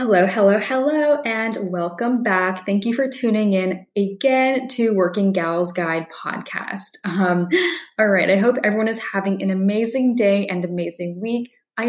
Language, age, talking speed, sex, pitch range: English, 10-29, 160 wpm, female, 185-240 Hz